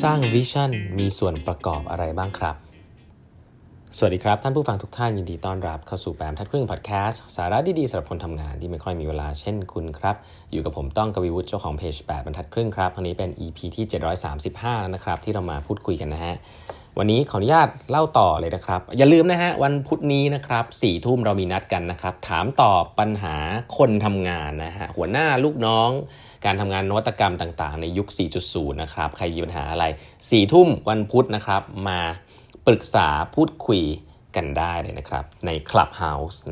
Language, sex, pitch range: Thai, male, 85-110 Hz